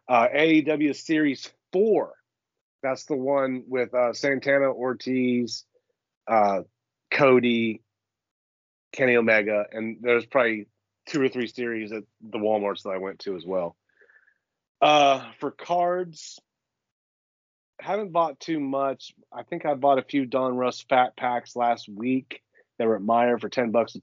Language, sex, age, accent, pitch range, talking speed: English, male, 30-49, American, 115-140 Hz, 145 wpm